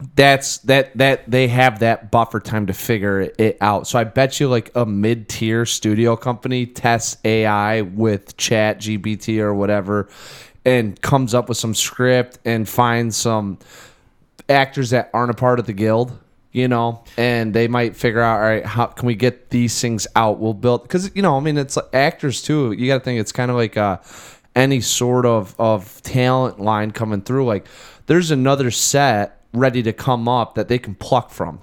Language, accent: English, American